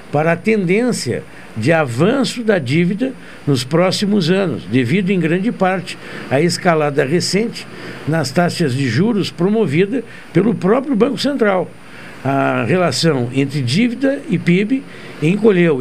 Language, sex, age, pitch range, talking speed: Portuguese, male, 60-79, 150-205 Hz, 125 wpm